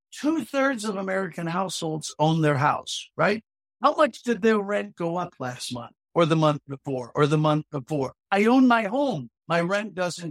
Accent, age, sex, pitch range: American, 60-79, male, 155-210 Hz